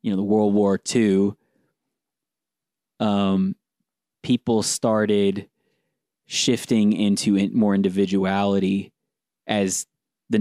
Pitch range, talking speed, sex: 95-105 Hz, 80 wpm, male